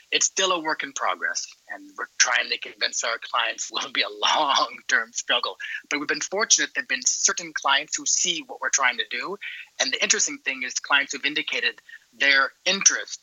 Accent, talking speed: American, 210 wpm